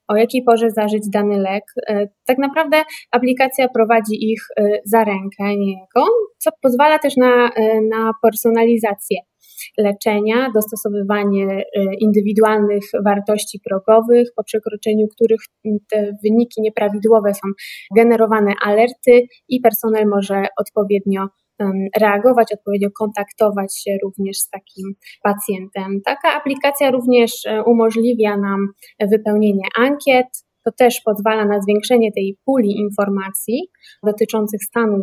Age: 20-39